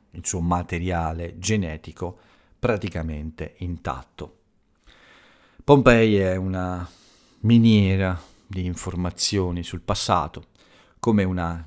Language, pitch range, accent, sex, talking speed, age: Italian, 85-100 Hz, native, male, 80 wpm, 50-69